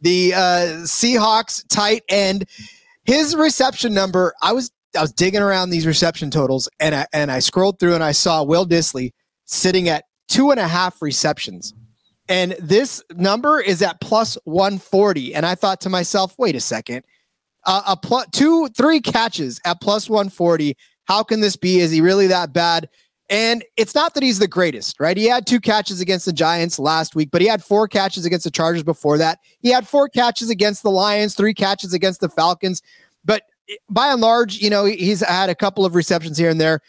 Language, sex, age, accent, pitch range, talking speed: English, male, 30-49, American, 165-210 Hz, 200 wpm